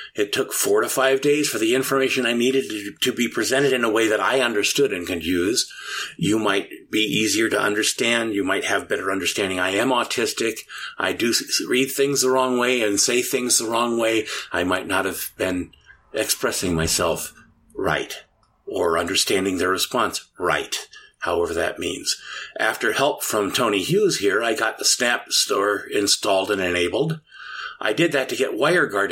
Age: 50-69